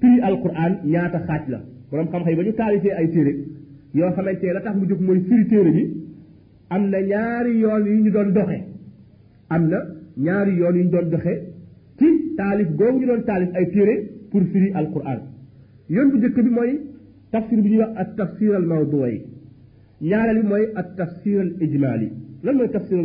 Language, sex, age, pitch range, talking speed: French, male, 50-69, 155-210 Hz, 50 wpm